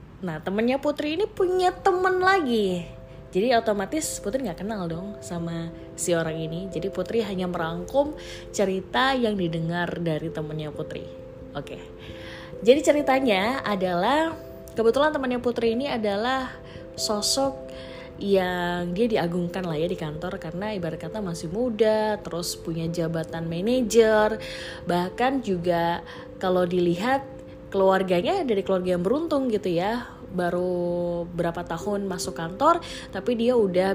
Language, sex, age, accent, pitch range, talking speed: Indonesian, female, 20-39, native, 170-230 Hz, 130 wpm